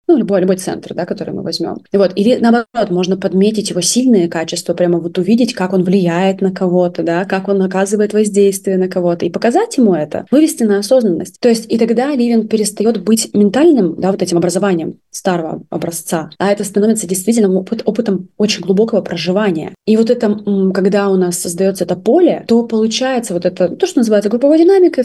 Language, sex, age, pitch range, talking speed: Russian, female, 20-39, 180-220 Hz, 190 wpm